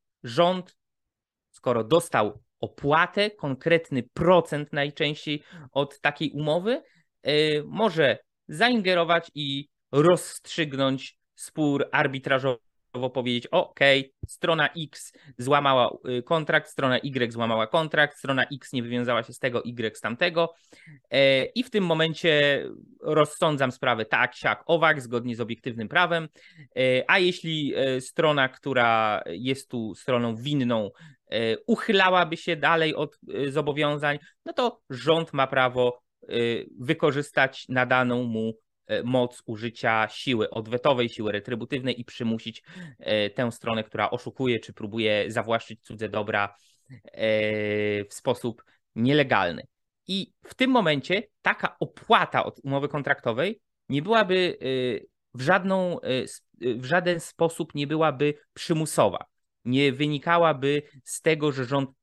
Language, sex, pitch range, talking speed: Polish, male, 120-160 Hz, 110 wpm